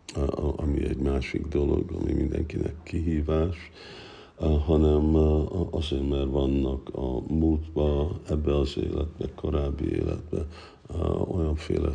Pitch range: 70-85 Hz